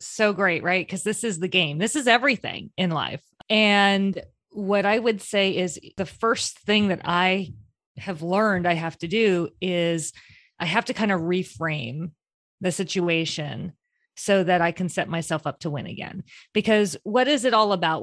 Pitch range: 180-220 Hz